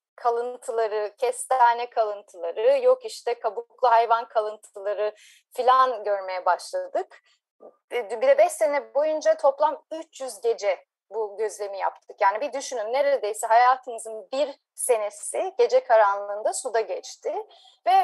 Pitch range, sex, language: 235-330 Hz, female, Turkish